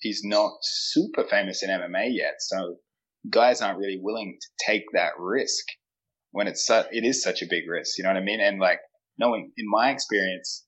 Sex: male